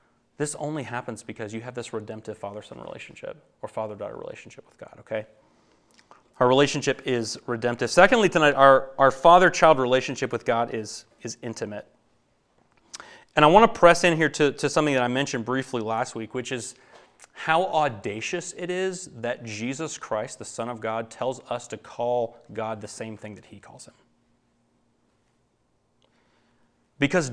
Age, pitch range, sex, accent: 30-49, 110-140 Hz, male, American